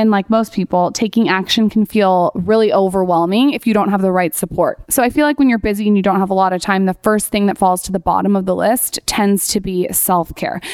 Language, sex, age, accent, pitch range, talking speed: English, female, 20-39, American, 195-250 Hz, 265 wpm